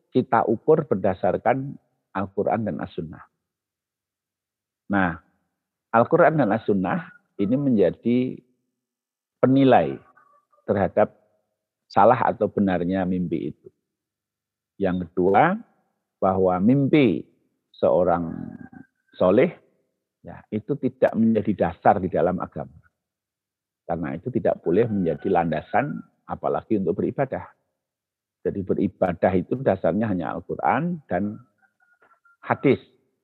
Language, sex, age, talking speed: Indonesian, male, 50-69, 90 wpm